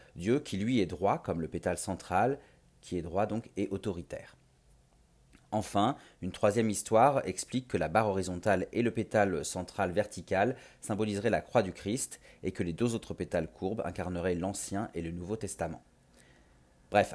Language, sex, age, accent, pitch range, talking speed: French, male, 30-49, French, 90-110 Hz, 170 wpm